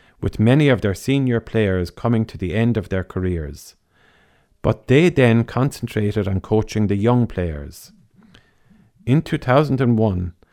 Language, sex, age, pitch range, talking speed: English, male, 50-69, 95-120 Hz, 135 wpm